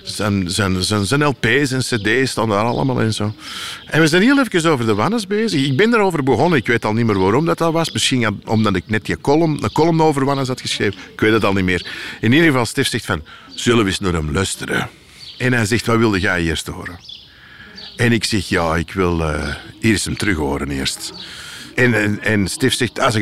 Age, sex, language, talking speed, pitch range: 50-69, male, Dutch, 240 wpm, 105-140 Hz